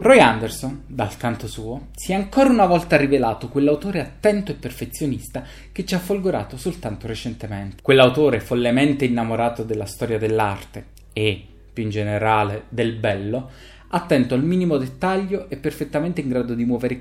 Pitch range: 110-145 Hz